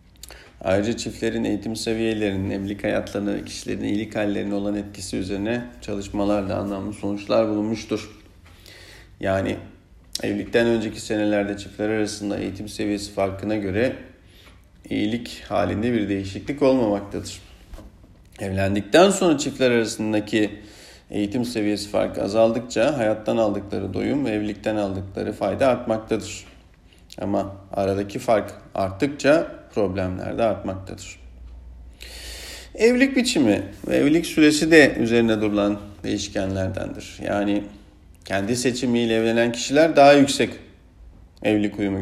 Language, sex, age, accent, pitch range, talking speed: Turkish, male, 40-59, native, 95-115 Hz, 105 wpm